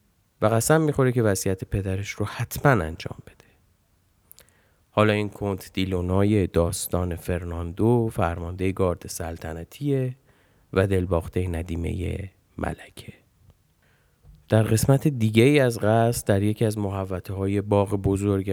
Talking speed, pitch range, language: 105 wpm, 95-120 Hz, Persian